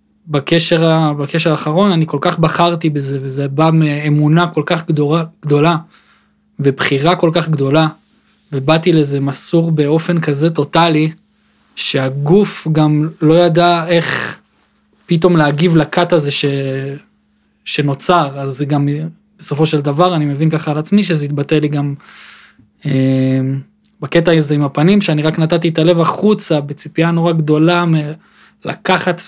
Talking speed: 130 wpm